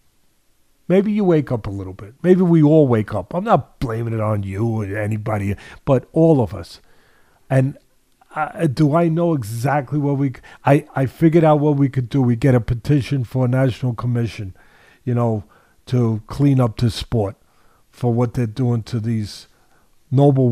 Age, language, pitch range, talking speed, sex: 50-69, English, 110-145 Hz, 180 wpm, male